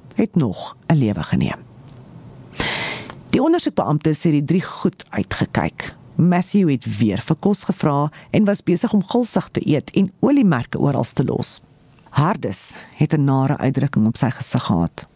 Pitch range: 135-195 Hz